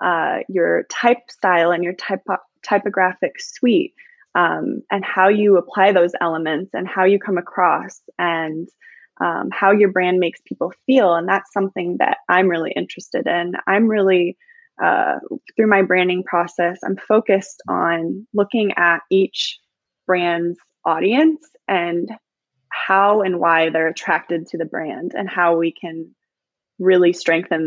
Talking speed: 145 wpm